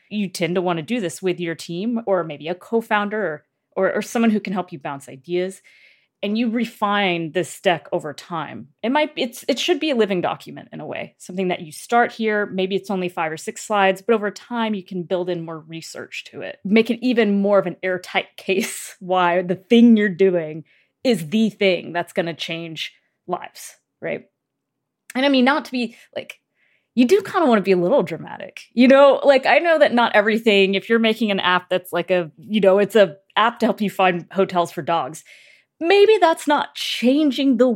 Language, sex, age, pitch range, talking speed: English, female, 30-49, 180-235 Hz, 220 wpm